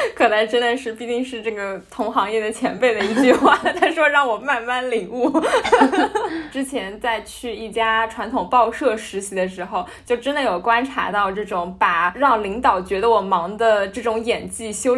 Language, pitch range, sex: Chinese, 225-300 Hz, female